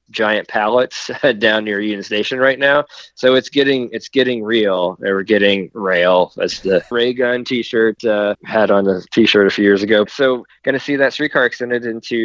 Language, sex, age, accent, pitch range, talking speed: English, male, 20-39, American, 105-120 Hz, 200 wpm